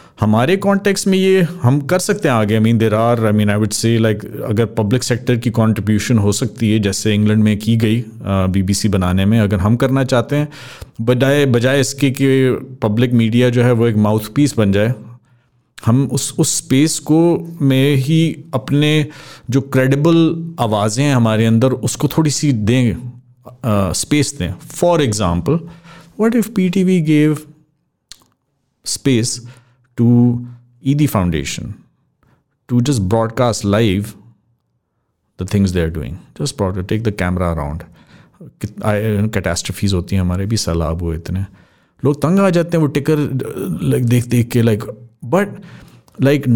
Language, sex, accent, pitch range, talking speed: English, male, Indian, 110-140 Hz, 125 wpm